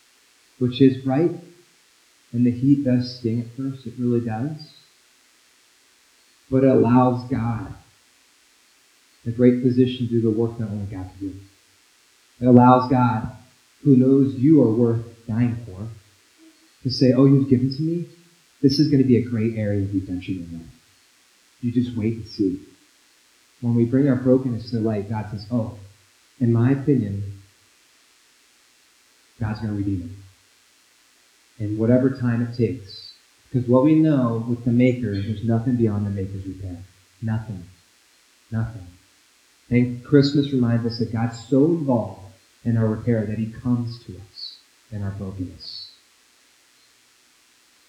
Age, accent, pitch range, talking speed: 30-49, American, 105-130 Hz, 155 wpm